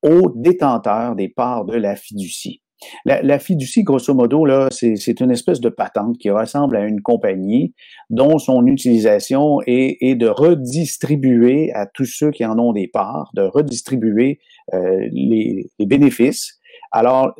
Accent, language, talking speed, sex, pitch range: Canadian, French, 160 wpm, male, 115-150 Hz